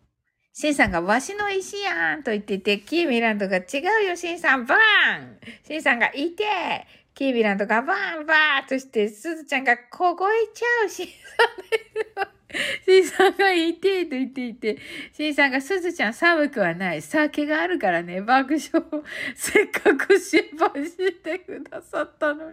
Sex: female